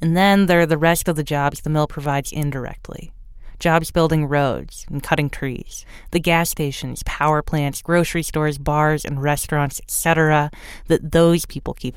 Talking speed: 170 wpm